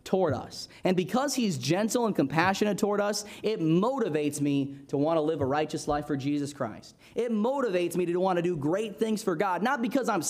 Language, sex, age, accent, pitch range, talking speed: English, male, 20-39, American, 155-210 Hz, 215 wpm